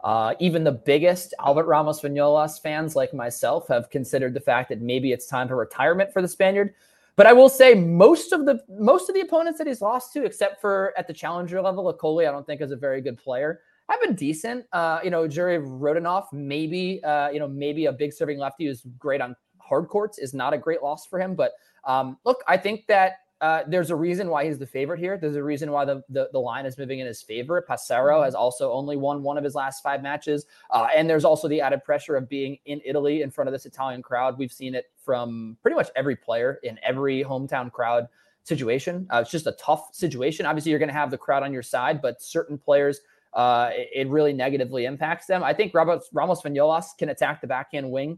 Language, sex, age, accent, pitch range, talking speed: English, male, 20-39, American, 135-180 Hz, 235 wpm